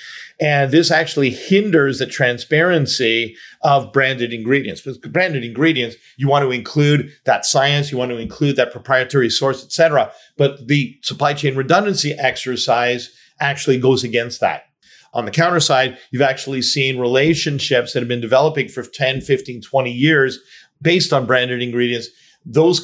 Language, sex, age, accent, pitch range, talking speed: English, male, 40-59, American, 125-150 Hz, 155 wpm